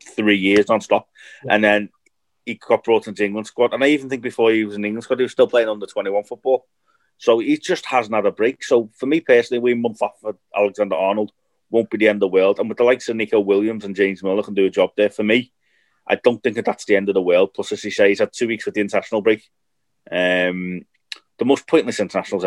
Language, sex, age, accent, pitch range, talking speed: English, male, 30-49, British, 100-135 Hz, 255 wpm